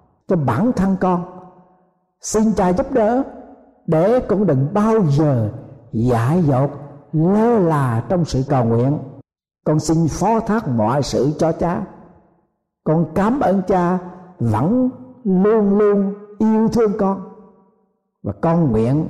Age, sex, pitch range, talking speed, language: 60-79, male, 130-185 Hz, 135 wpm, Vietnamese